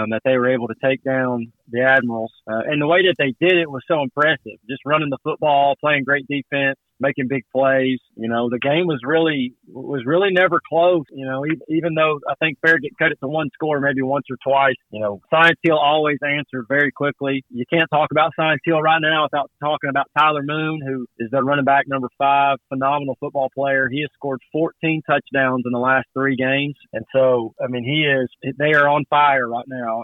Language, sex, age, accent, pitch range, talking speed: English, male, 30-49, American, 135-160 Hz, 220 wpm